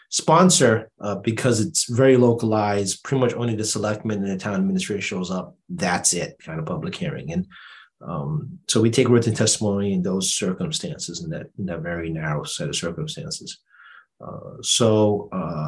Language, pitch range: English, 100-145 Hz